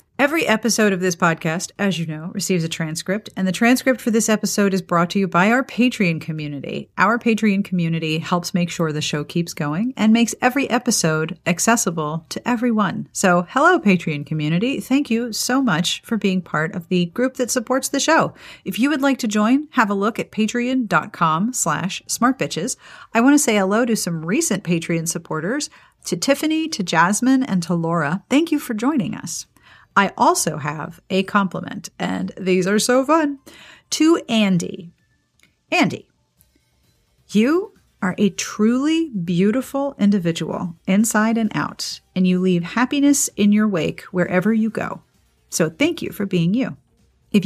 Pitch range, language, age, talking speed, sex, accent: 175-240 Hz, English, 40-59, 170 wpm, female, American